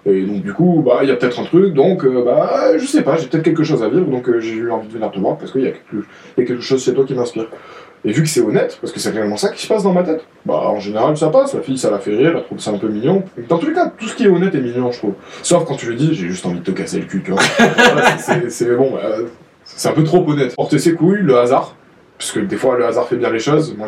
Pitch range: 125-170 Hz